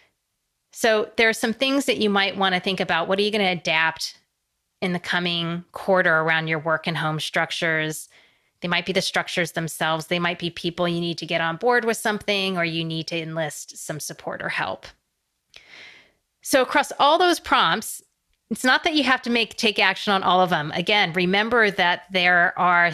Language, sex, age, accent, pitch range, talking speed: English, female, 30-49, American, 165-205 Hz, 200 wpm